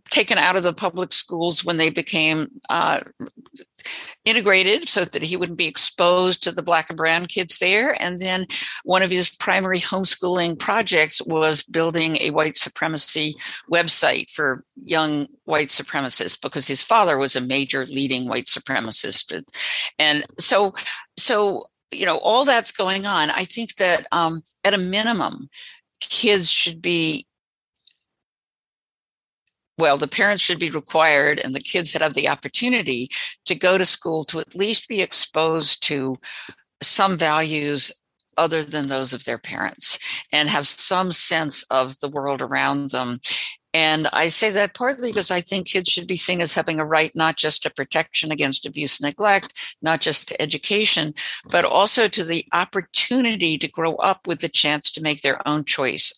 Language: English